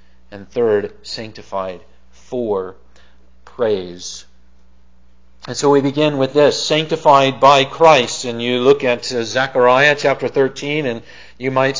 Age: 40-59